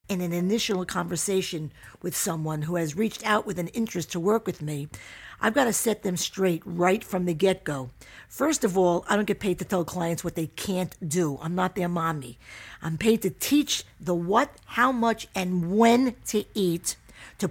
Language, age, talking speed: English, 50-69, 195 wpm